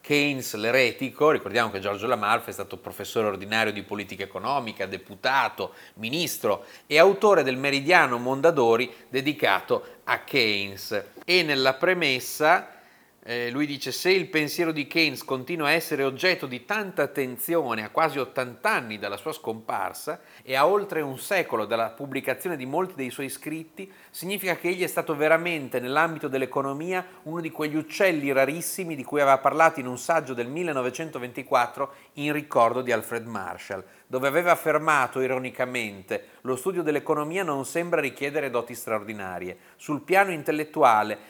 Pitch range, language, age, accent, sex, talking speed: 125-165 Hz, Italian, 30-49, native, male, 150 wpm